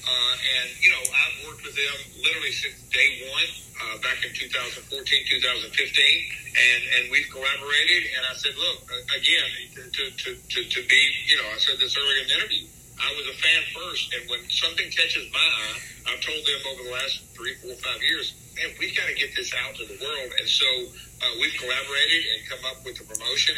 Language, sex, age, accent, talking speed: English, male, 50-69, American, 210 wpm